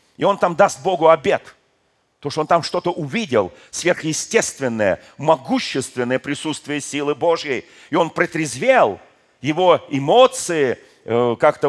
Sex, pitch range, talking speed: male, 125-180 Hz, 120 wpm